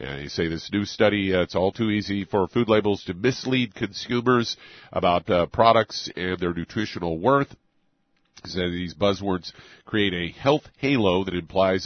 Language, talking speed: English, 160 wpm